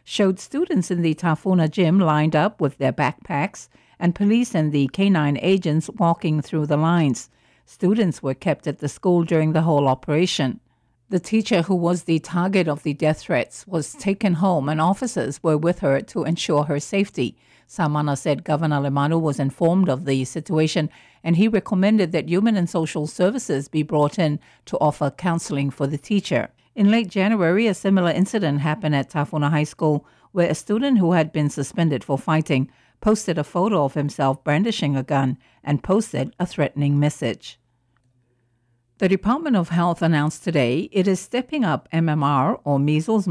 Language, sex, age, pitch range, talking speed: English, female, 50-69, 145-180 Hz, 175 wpm